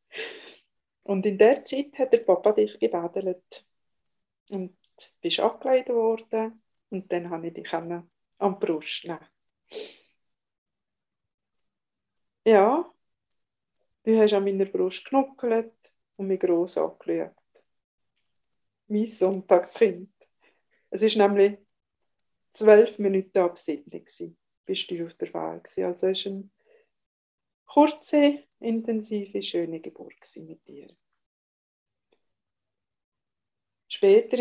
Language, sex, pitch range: German, female, 190-235 Hz